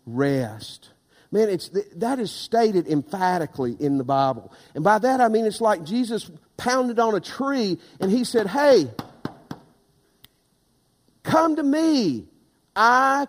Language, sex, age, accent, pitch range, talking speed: English, male, 50-69, American, 180-245 Hz, 135 wpm